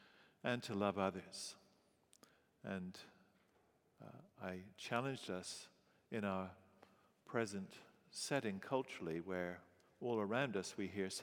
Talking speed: 105 wpm